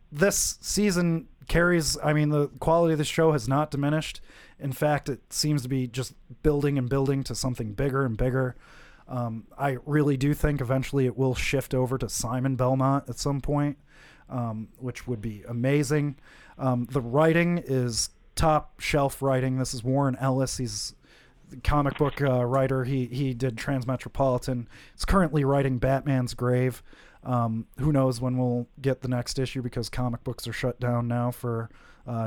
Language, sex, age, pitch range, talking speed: English, male, 30-49, 120-145 Hz, 170 wpm